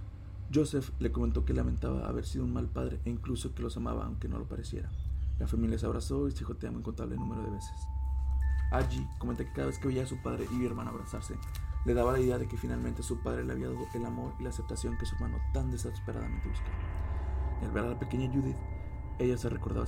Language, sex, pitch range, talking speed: English, male, 65-100 Hz, 235 wpm